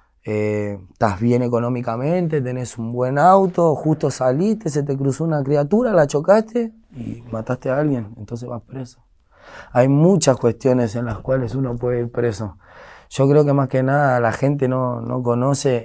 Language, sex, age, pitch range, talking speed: Spanish, male, 20-39, 115-140 Hz, 170 wpm